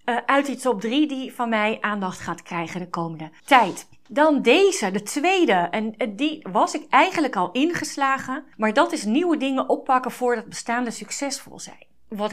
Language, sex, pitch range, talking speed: Dutch, female, 200-265 Hz, 170 wpm